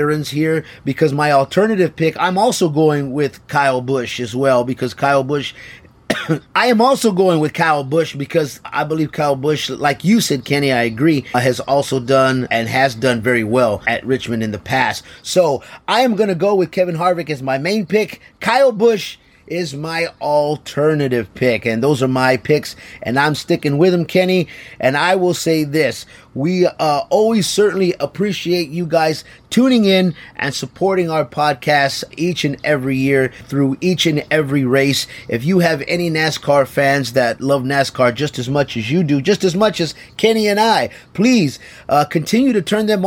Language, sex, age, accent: English, male, 30-49, American